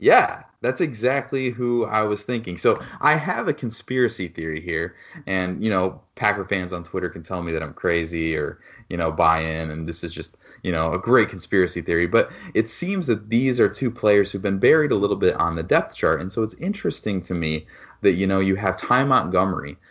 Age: 30-49